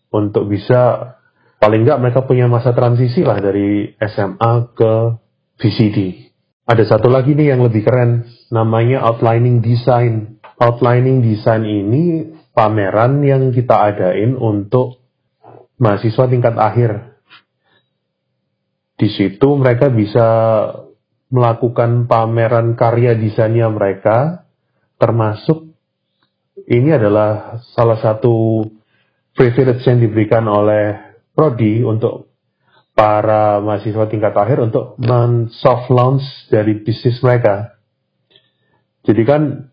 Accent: native